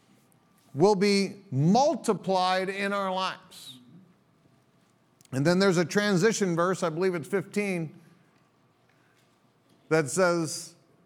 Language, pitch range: English, 120-175 Hz